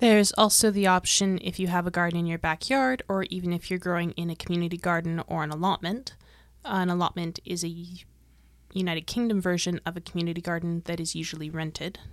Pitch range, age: 170-200 Hz, 20-39